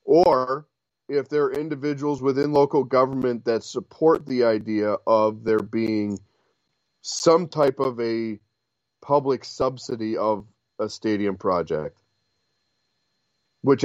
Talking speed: 115 wpm